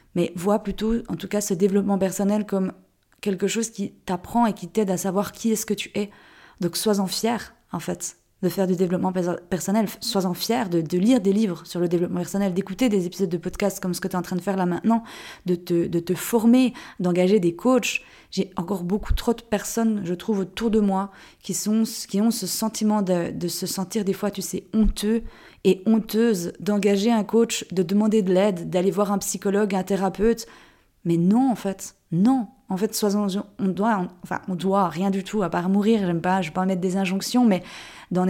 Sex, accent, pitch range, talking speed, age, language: female, French, 185-220 Hz, 220 wpm, 20-39, French